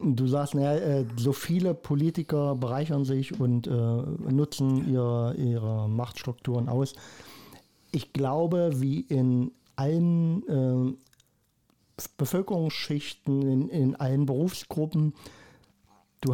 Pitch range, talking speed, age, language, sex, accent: 125-155 Hz, 95 wpm, 50-69, German, male, German